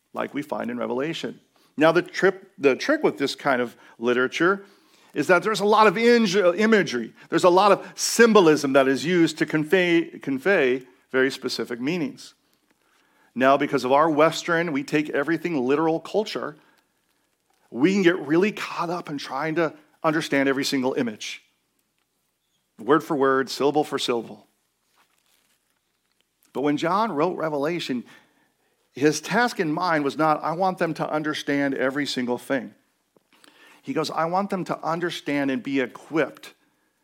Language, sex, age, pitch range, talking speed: English, male, 40-59, 130-180 Hz, 150 wpm